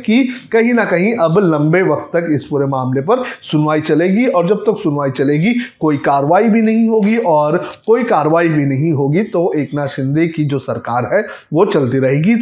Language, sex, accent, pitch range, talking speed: Hindi, male, native, 155-225 Hz, 160 wpm